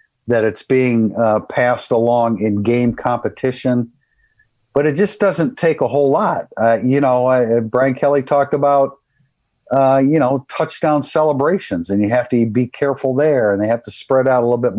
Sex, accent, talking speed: male, American, 185 wpm